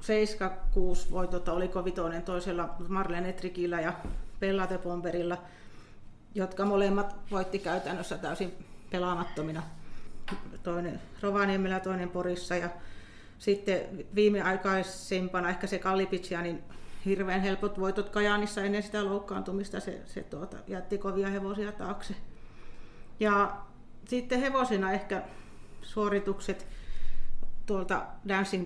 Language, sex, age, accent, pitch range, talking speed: Finnish, female, 40-59, native, 175-195 Hz, 100 wpm